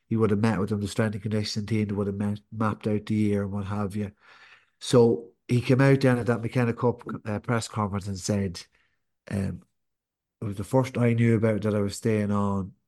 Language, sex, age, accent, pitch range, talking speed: English, male, 30-49, Irish, 105-120 Hz, 225 wpm